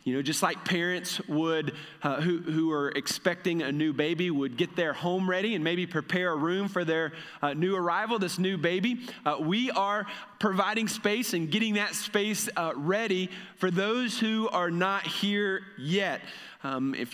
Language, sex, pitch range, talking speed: English, male, 170-200 Hz, 180 wpm